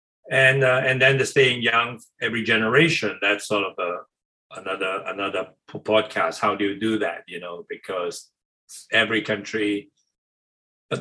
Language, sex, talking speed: English, male, 145 wpm